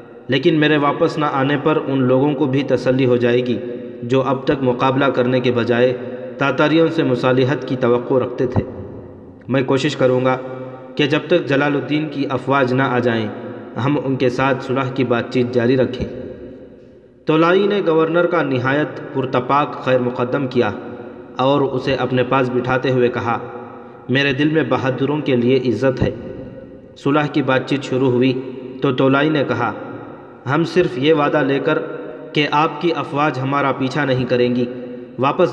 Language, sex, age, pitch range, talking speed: Urdu, male, 40-59, 125-145 Hz, 170 wpm